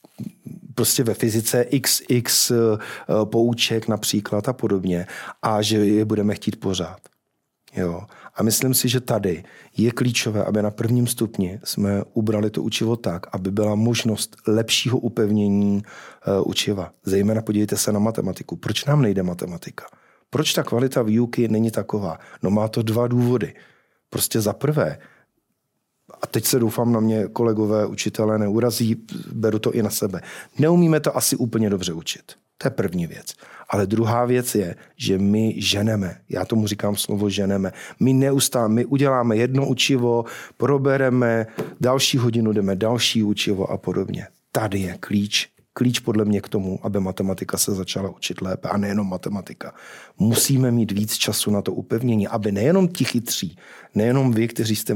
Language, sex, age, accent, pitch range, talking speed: Czech, male, 40-59, native, 105-125 Hz, 155 wpm